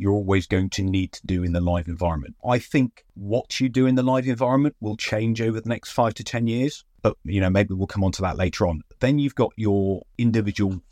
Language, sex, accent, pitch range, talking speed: English, male, British, 95-110 Hz, 245 wpm